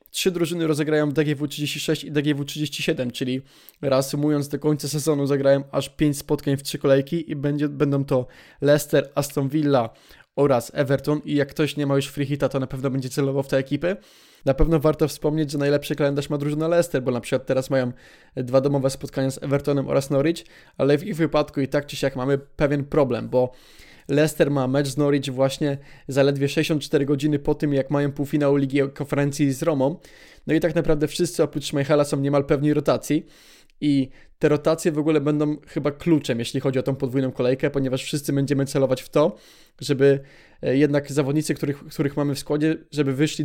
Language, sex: Polish, male